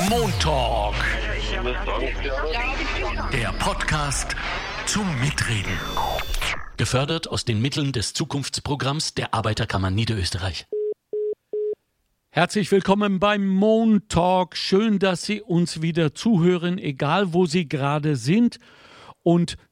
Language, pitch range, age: German, 140-205 Hz, 60-79